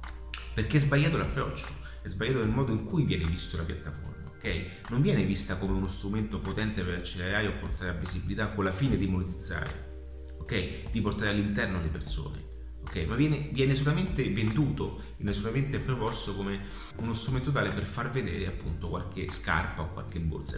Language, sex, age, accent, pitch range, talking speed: Italian, male, 30-49, native, 80-120 Hz, 180 wpm